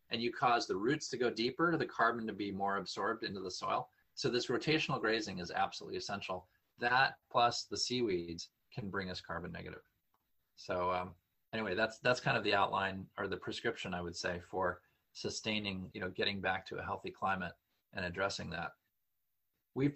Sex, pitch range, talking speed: male, 95-125 Hz, 185 wpm